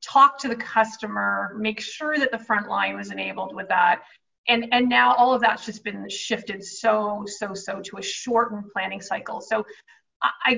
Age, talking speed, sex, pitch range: 30-49, 185 wpm, female, 210-245 Hz